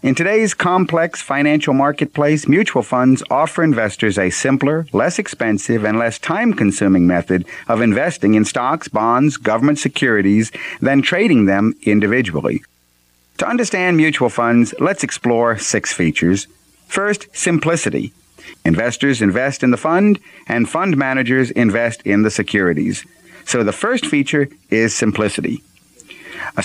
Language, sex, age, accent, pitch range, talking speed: English, male, 50-69, American, 105-155 Hz, 130 wpm